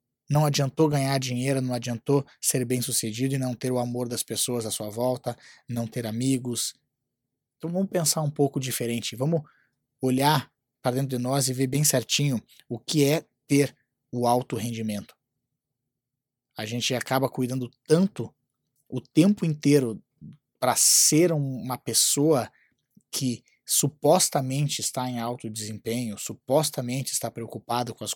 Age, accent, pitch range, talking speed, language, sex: 20-39, Brazilian, 120-140 Hz, 145 wpm, Portuguese, male